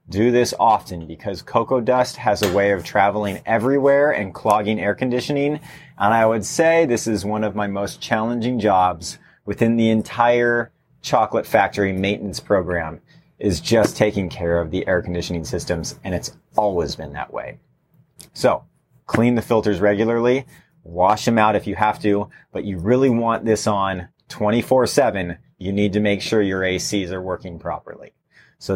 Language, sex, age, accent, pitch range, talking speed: English, male, 30-49, American, 100-135 Hz, 165 wpm